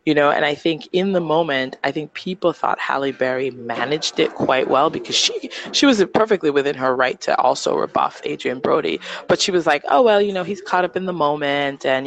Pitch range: 130-180 Hz